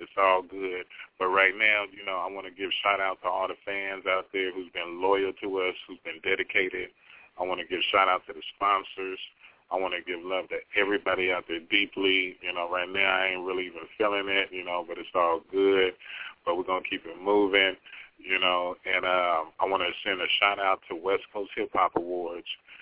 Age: 30-49